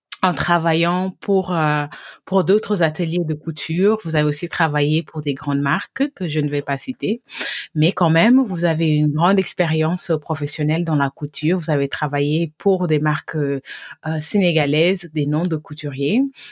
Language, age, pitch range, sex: English, 30-49, 145-180 Hz, female